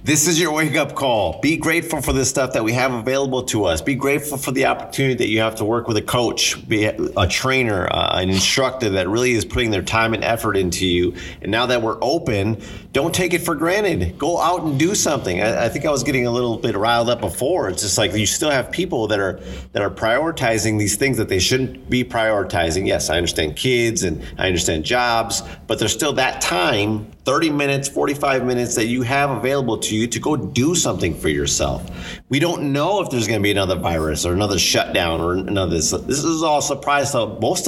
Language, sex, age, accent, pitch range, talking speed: English, male, 30-49, American, 95-130 Hz, 225 wpm